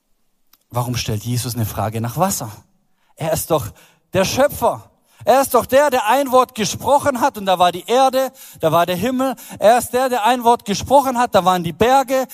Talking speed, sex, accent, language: 205 wpm, male, German, German